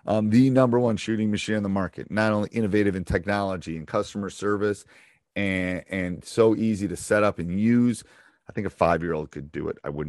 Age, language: 30-49, English